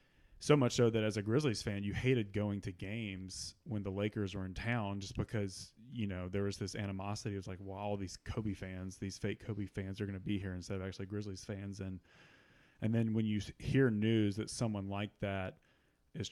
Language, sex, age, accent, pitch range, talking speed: English, male, 30-49, American, 100-115 Hz, 230 wpm